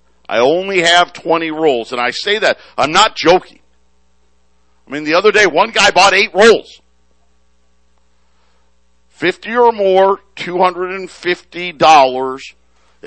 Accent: American